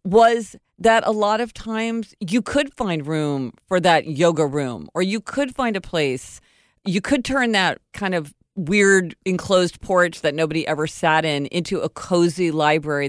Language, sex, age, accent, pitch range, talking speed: English, female, 40-59, American, 150-205 Hz, 175 wpm